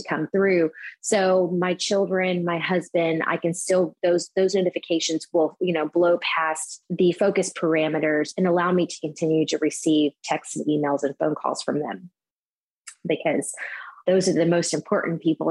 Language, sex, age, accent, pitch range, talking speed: English, female, 20-39, American, 165-190 Hz, 165 wpm